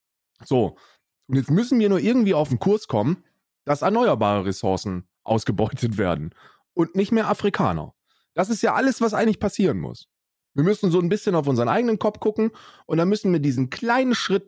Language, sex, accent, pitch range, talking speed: German, male, German, 135-205 Hz, 185 wpm